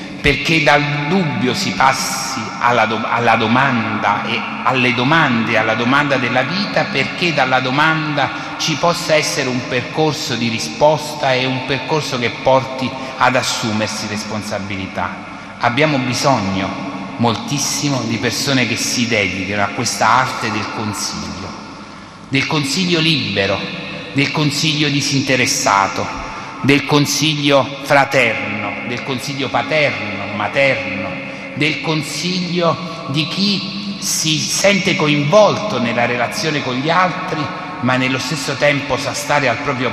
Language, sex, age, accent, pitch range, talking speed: Italian, male, 30-49, native, 125-155 Hz, 120 wpm